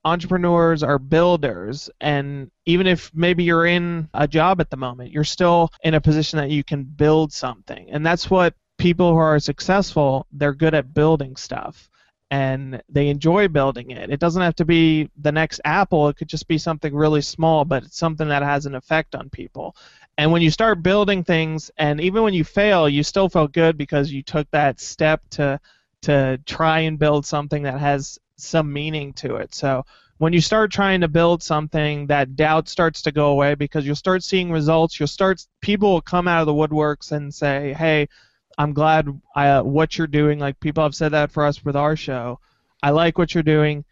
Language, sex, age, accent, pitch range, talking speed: English, male, 30-49, American, 145-165 Hz, 200 wpm